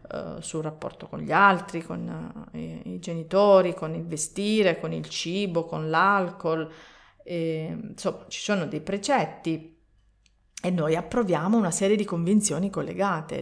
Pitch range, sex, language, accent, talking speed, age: 160-200 Hz, female, Italian, native, 130 wpm, 40-59